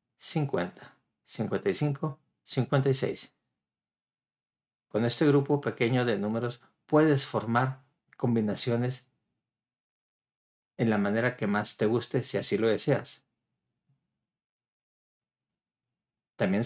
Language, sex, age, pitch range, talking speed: English, male, 50-69, 115-140 Hz, 85 wpm